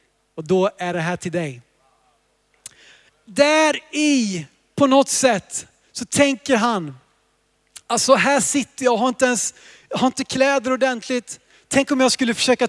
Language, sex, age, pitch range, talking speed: Swedish, male, 30-49, 215-265 Hz, 150 wpm